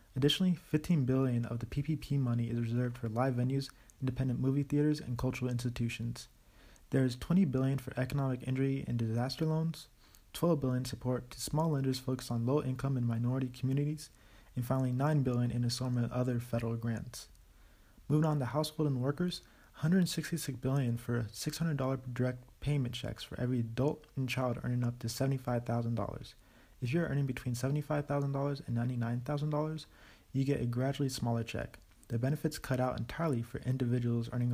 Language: English